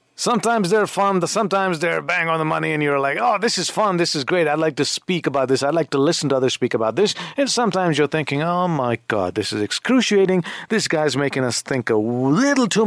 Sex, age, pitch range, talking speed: male, 50-69, 115-180 Hz, 240 wpm